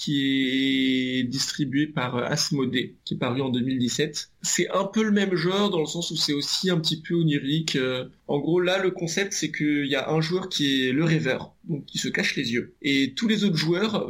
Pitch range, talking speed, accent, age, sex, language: 140-170 Hz, 220 wpm, French, 20-39, male, French